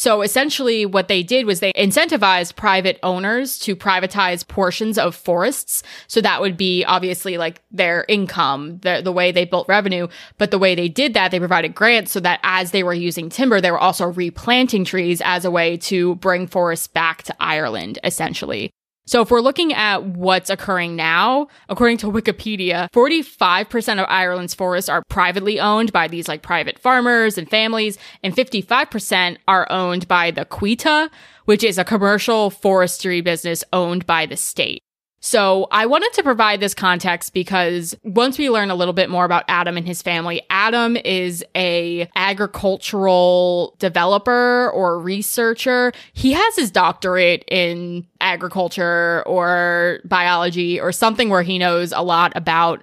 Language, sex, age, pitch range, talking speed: English, female, 20-39, 175-215 Hz, 165 wpm